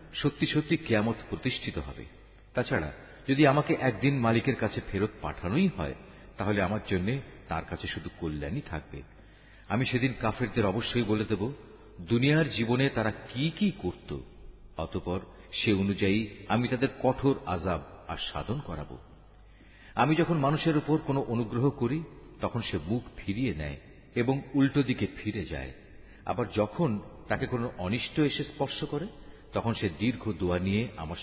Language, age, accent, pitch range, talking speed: Bengali, 50-69, native, 95-140 Hz, 135 wpm